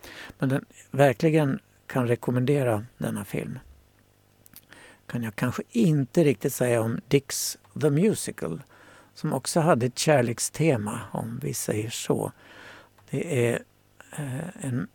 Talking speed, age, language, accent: 115 wpm, 60-79, Swedish, native